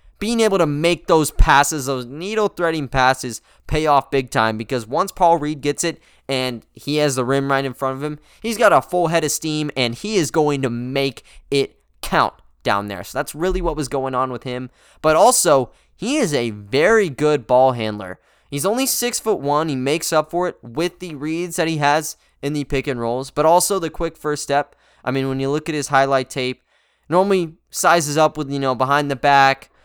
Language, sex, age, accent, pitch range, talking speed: English, male, 20-39, American, 130-170 Hz, 220 wpm